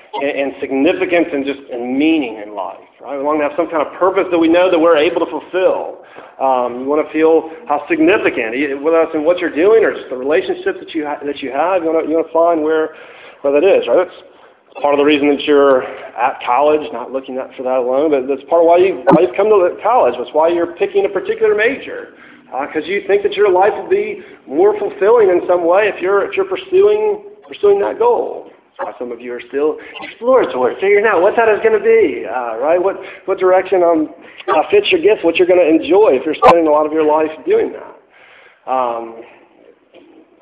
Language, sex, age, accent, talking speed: English, male, 40-59, American, 230 wpm